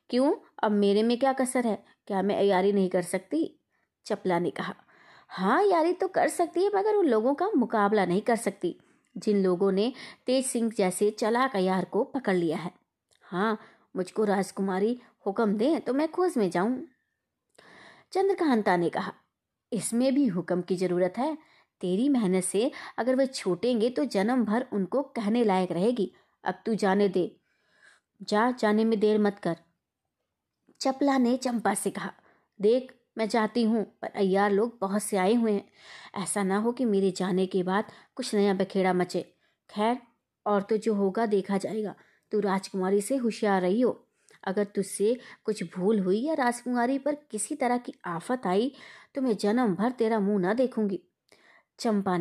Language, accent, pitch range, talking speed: Hindi, native, 195-250 Hz, 170 wpm